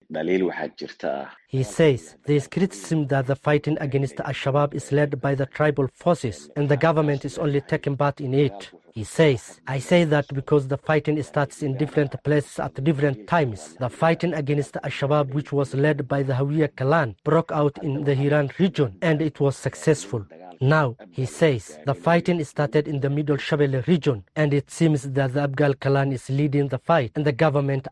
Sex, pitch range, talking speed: male, 140-155 Hz, 185 wpm